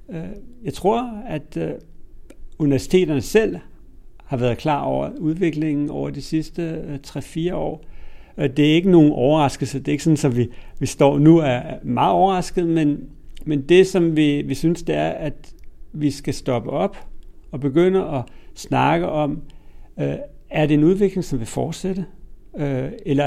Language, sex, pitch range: Danish, male, 130-165 Hz